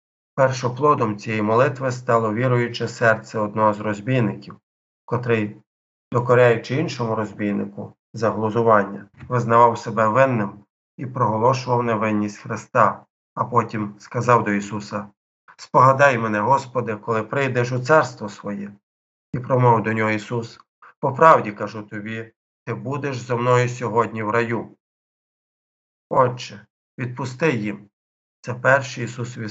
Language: Ukrainian